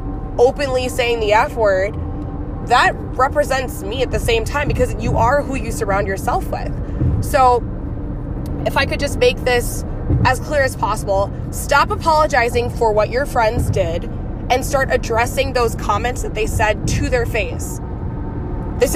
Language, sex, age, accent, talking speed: English, female, 20-39, American, 155 wpm